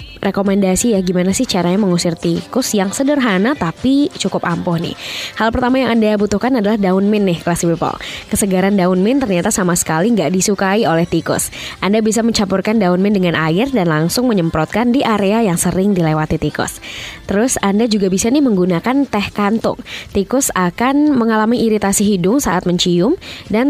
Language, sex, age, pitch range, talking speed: Indonesian, female, 20-39, 180-225 Hz, 165 wpm